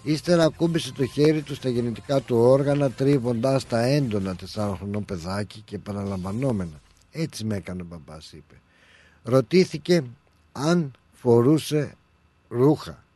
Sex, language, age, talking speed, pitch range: male, Greek, 50-69, 120 wpm, 95-135 Hz